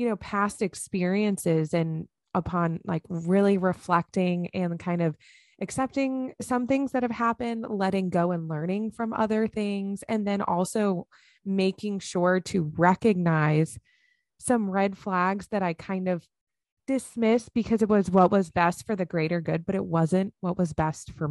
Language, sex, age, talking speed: English, female, 20-39, 160 wpm